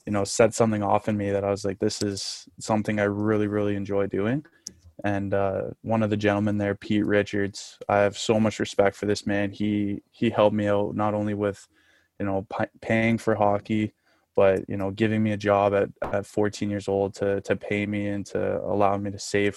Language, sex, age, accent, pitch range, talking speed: Swedish, male, 20-39, American, 100-105 Hz, 220 wpm